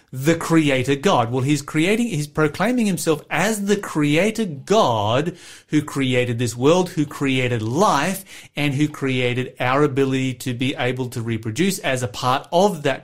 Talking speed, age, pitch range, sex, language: 160 wpm, 30-49, 125-155 Hz, male, English